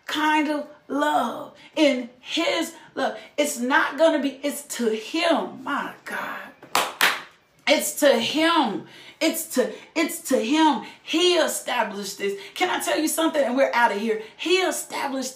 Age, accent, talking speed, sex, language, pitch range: 40-59, American, 150 wpm, female, English, 240-315 Hz